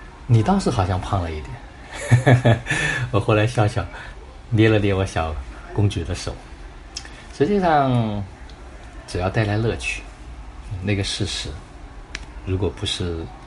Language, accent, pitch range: Chinese, native, 80-105 Hz